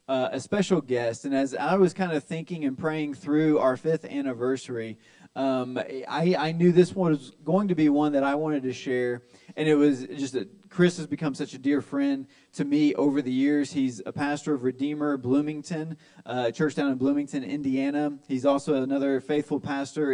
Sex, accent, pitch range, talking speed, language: male, American, 130-155 Hz, 200 wpm, English